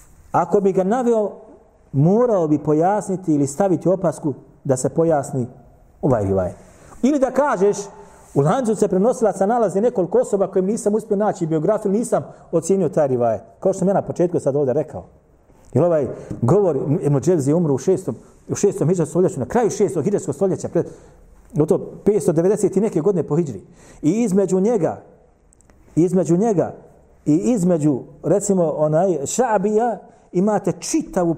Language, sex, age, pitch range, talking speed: English, male, 40-59, 150-205 Hz, 155 wpm